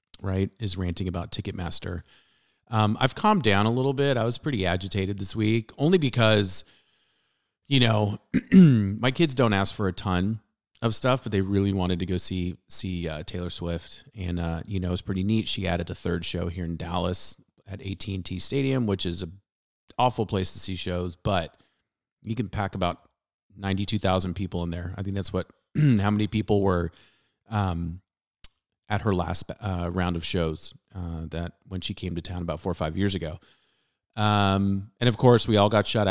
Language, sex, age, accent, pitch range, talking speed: English, male, 30-49, American, 90-110 Hz, 195 wpm